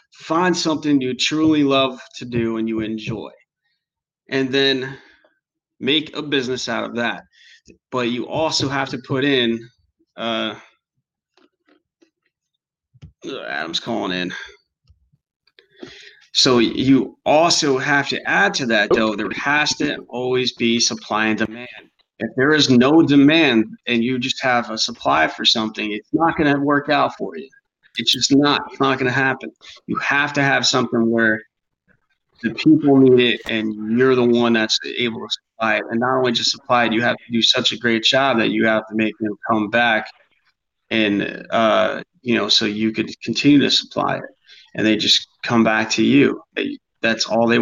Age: 30-49